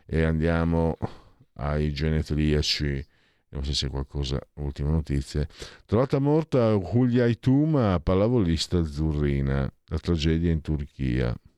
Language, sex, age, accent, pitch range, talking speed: Italian, male, 50-69, native, 80-120 Hz, 110 wpm